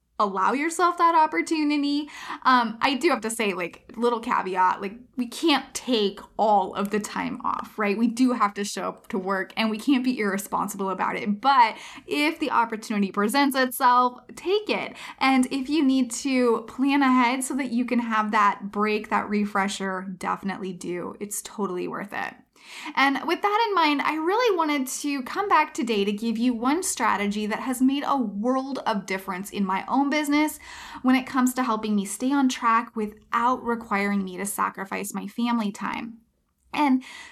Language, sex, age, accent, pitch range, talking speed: English, female, 10-29, American, 205-275 Hz, 185 wpm